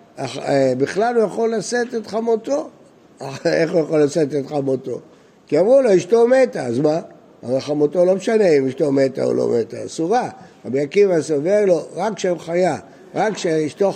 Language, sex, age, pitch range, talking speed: Hebrew, male, 60-79, 150-210 Hz, 145 wpm